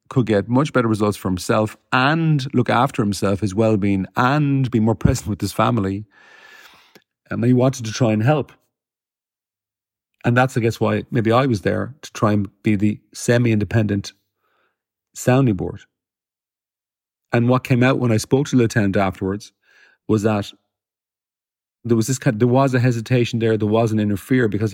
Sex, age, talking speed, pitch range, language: male, 40-59, 175 wpm, 105-130 Hz, English